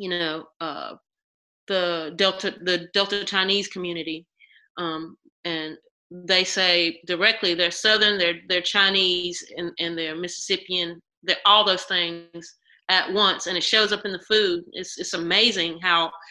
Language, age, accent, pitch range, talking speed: English, 30-49, American, 175-205 Hz, 145 wpm